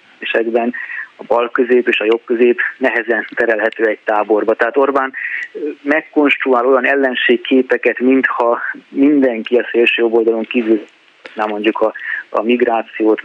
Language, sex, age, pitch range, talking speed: Hungarian, male, 30-49, 115-130 Hz, 130 wpm